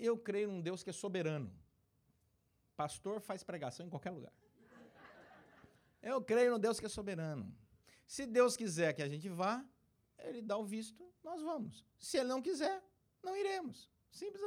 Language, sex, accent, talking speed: Portuguese, male, Brazilian, 165 wpm